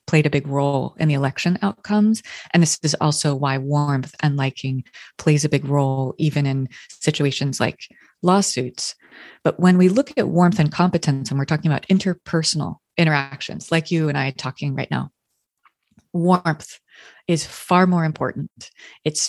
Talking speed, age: 160 wpm, 30-49